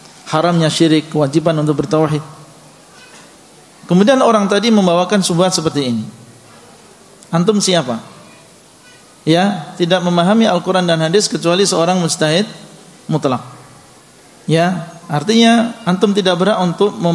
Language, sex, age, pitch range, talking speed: Indonesian, male, 40-59, 155-195 Hz, 105 wpm